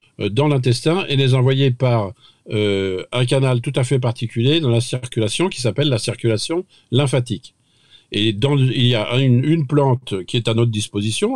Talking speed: 180 wpm